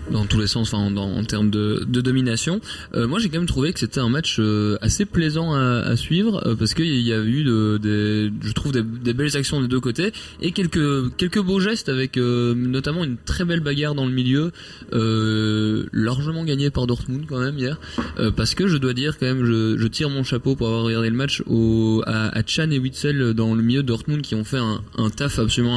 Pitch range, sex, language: 115-140 Hz, male, French